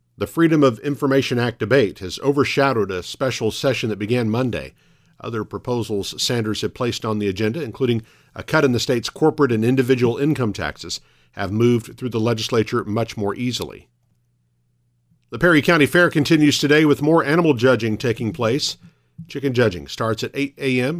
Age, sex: 50-69, male